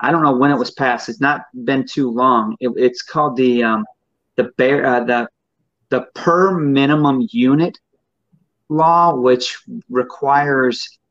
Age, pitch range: 30-49, 115-135 Hz